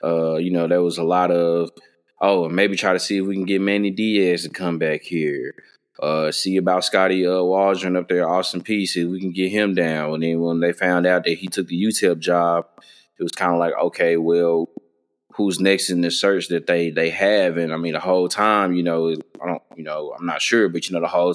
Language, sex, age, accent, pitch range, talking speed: English, male, 20-39, American, 85-95 Hz, 240 wpm